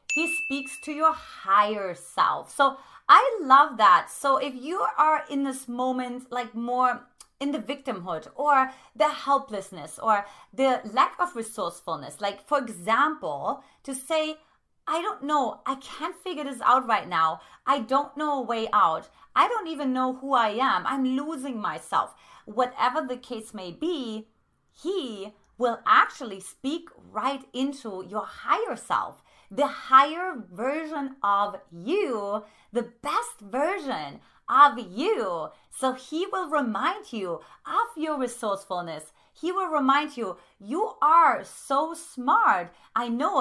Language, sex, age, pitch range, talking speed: English, female, 30-49, 230-300 Hz, 140 wpm